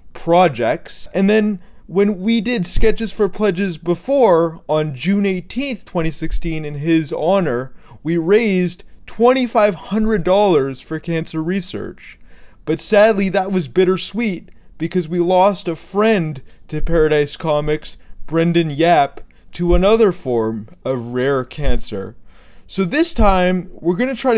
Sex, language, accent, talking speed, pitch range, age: male, English, American, 125 wpm, 145-200 Hz, 30-49